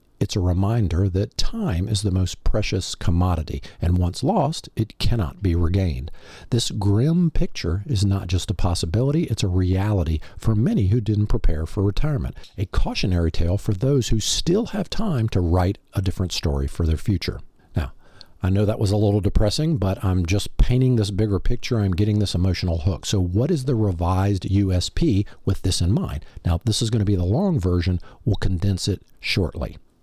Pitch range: 90-115 Hz